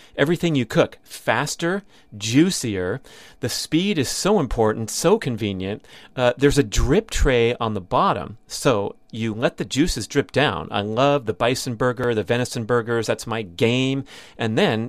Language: English